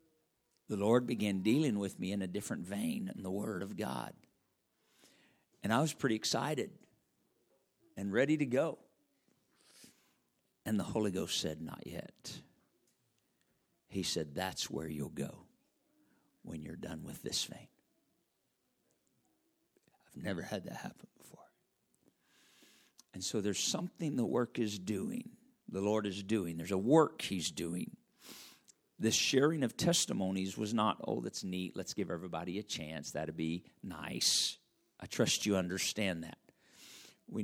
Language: English